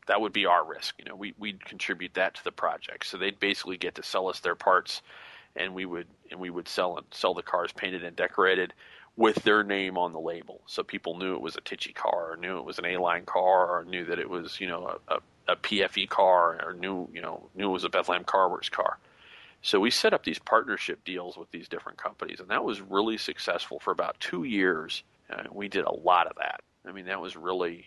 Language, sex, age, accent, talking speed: English, male, 40-59, American, 245 wpm